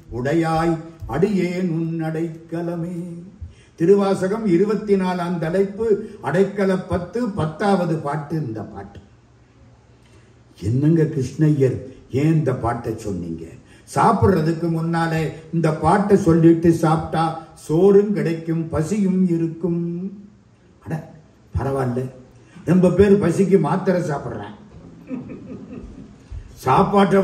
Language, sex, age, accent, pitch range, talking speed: Tamil, male, 50-69, native, 130-195 Hz, 80 wpm